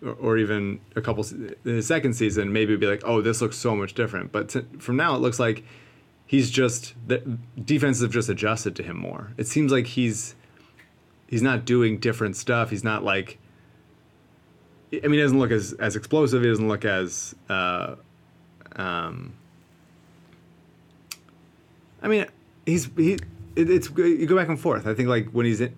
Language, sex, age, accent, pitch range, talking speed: English, male, 30-49, American, 105-125 Hz, 180 wpm